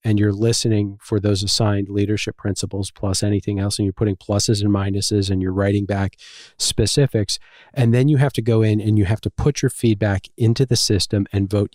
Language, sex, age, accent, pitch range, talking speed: English, male, 40-59, American, 100-115 Hz, 210 wpm